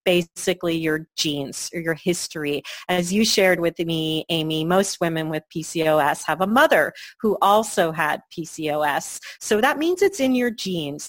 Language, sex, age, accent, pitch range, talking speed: English, female, 40-59, American, 165-210 Hz, 160 wpm